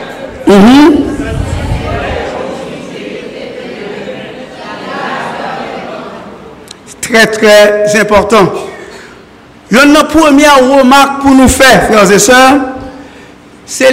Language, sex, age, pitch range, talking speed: French, male, 60-79, 250-305 Hz, 65 wpm